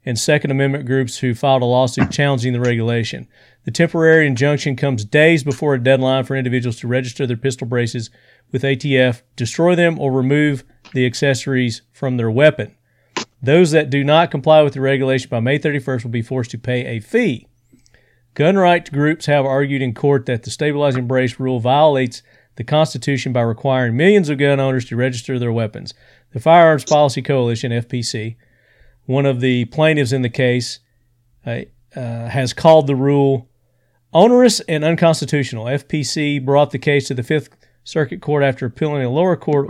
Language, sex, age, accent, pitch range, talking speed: English, male, 40-59, American, 125-145 Hz, 170 wpm